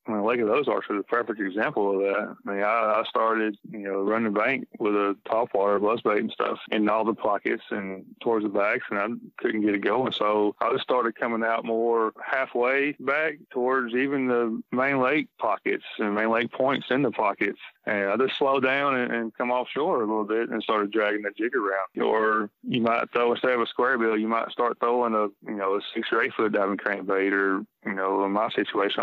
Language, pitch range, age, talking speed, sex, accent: English, 105-120 Hz, 20-39, 230 wpm, male, American